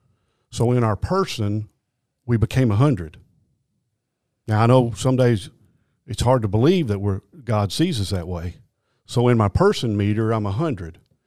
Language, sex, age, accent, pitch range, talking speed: English, male, 50-69, American, 105-125 Hz, 155 wpm